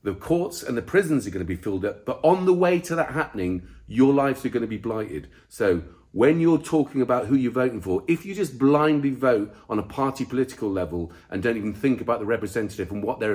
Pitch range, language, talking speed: 105-150 Hz, English, 245 wpm